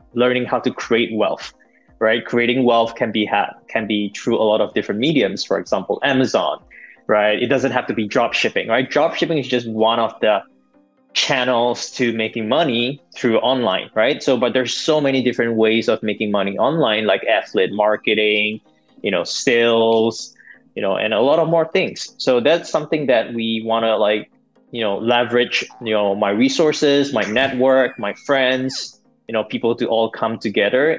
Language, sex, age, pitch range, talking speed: English, male, 20-39, 110-130 Hz, 185 wpm